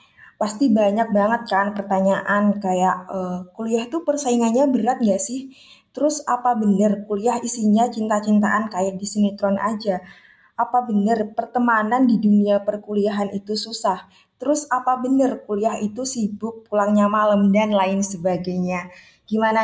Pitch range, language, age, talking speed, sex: 200-235 Hz, Indonesian, 20-39, 130 wpm, female